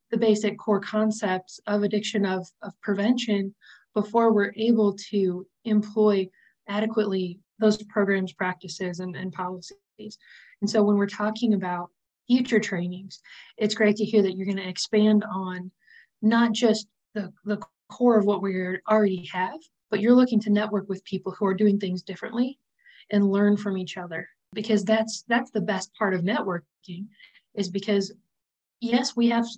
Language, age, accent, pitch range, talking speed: Polish, 20-39, American, 195-220 Hz, 160 wpm